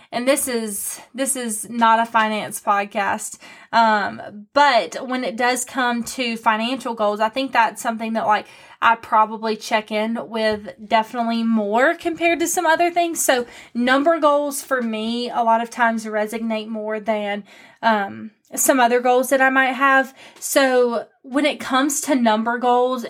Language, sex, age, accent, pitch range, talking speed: English, female, 20-39, American, 220-270 Hz, 165 wpm